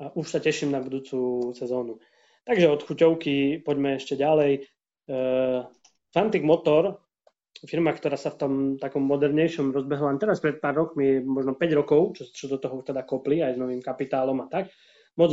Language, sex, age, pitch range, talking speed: Slovak, male, 20-39, 130-150 Hz, 175 wpm